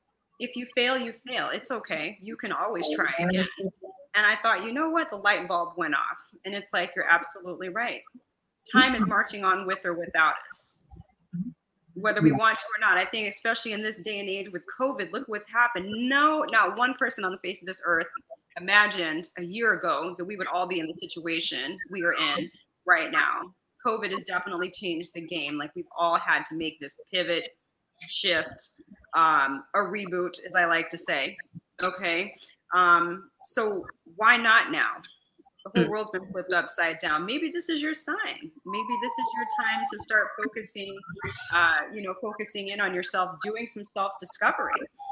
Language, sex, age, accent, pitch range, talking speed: English, female, 20-39, American, 175-240 Hz, 190 wpm